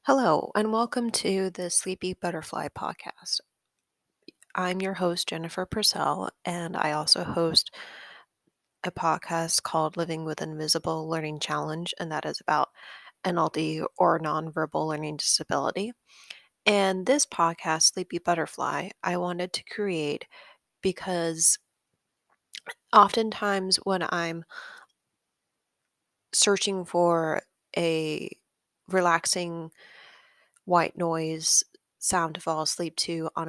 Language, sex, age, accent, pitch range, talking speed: English, female, 20-39, American, 160-190 Hz, 110 wpm